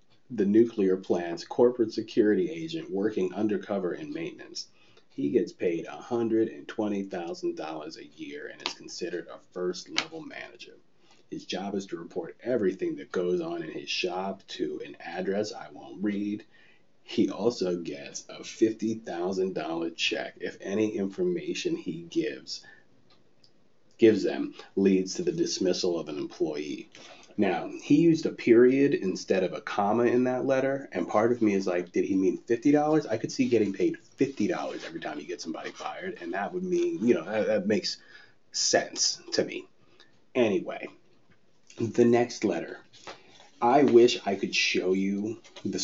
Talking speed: 155 wpm